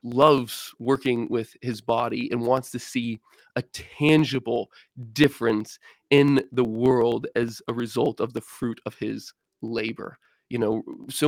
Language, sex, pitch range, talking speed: English, male, 115-135 Hz, 145 wpm